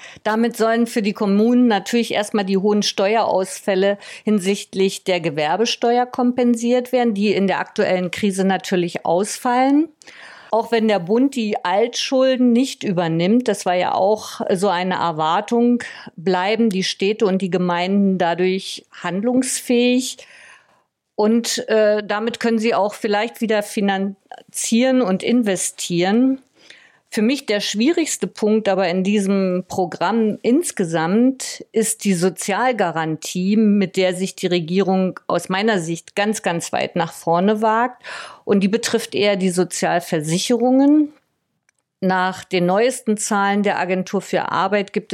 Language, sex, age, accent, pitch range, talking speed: German, female, 50-69, German, 185-230 Hz, 130 wpm